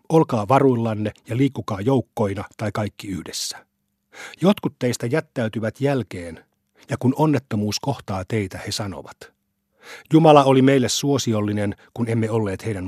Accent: native